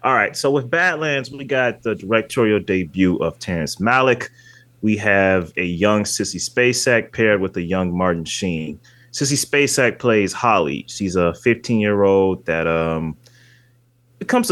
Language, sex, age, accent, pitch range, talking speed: English, male, 30-49, American, 95-125 Hz, 145 wpm